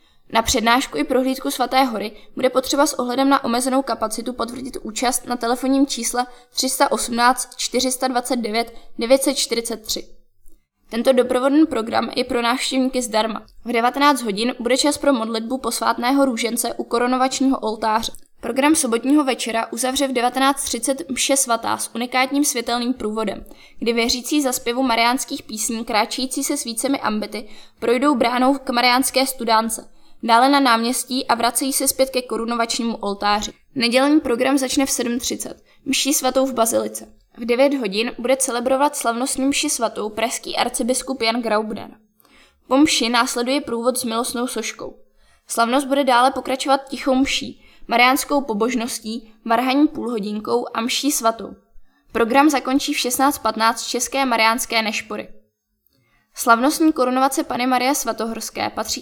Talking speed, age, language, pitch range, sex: 135 wpm, 20-39, Czech, 230-270 Hz, female